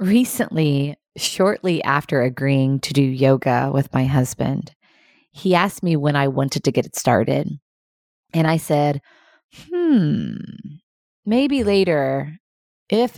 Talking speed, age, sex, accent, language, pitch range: 125 wpm, 20-39, female, American, English, 140-185 Hz